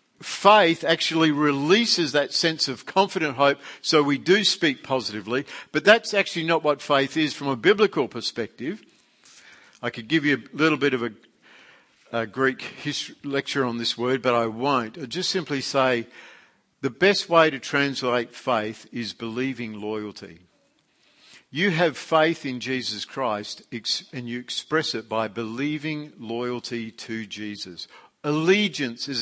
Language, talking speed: English, 150 wpm